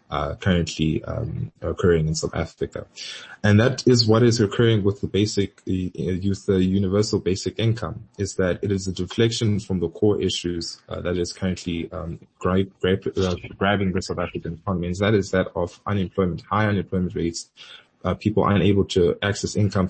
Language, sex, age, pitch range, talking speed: English, male, 20-39, 85-105 Hz, 175 wpm